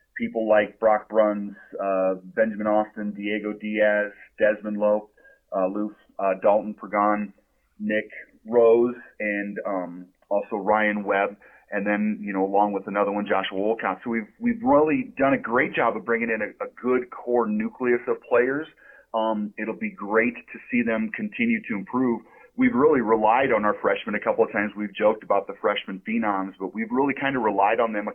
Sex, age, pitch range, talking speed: male, 30-49, 100-120 Hz, 180 wpm